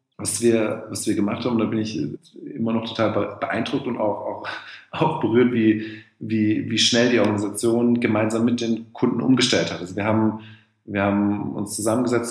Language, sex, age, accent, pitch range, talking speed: German, male, 40-59, German, 100-115 Hz, 180 wpm